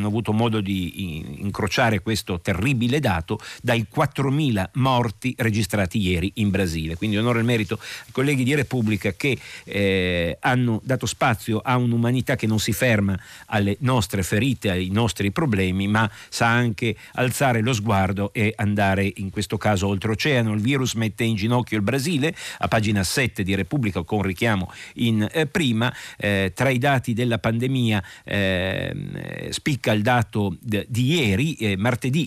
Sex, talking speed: male, 155 wpm